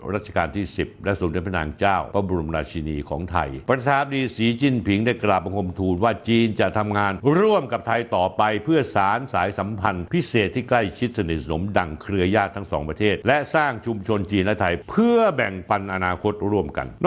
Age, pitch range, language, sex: 60-79, 95-125 Hz, Thai, male